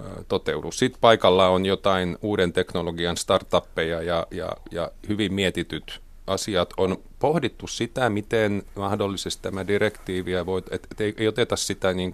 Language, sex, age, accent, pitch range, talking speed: Finnish, male, 30-49, native, 90-105 Hz, 130 wpm